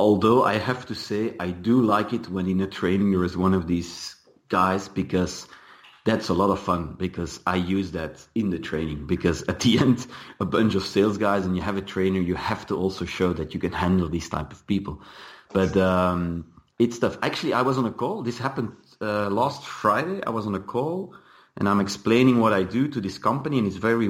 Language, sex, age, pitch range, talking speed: English, male, 30-49, 95-125 Hz, 225 wpm